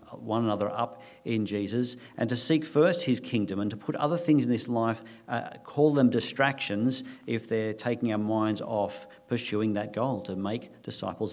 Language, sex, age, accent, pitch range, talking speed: English, male, 50-69, Australian, 110-135 Hz, 185 wpm